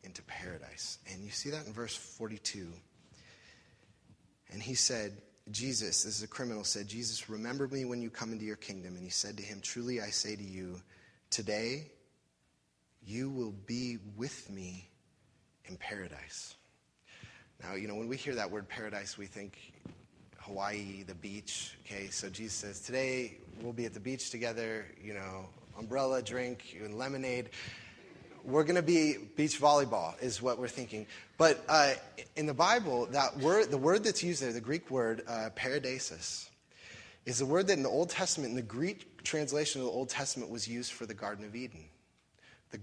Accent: American